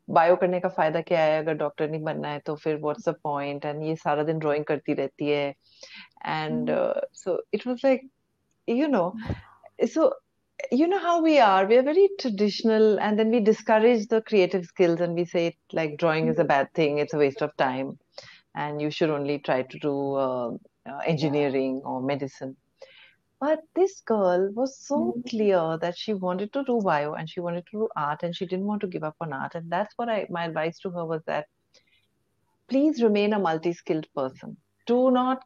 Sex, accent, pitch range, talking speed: female, Indian, 155-225 Hz, 195 wpm